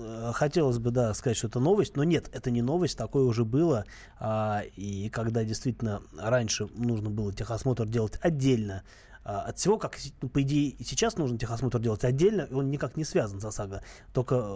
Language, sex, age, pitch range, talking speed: Russian, male, 20-39, 110-145 Hz, 170 wpm